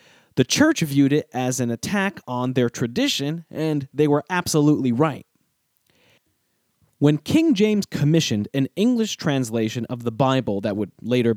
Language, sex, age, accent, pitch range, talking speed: English, male, 30-49, American, 125-180 Hz, 150 wpm